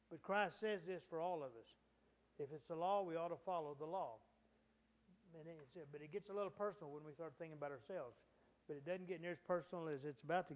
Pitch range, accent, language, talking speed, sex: 150-185 Hz, American, English, 240 wpm, male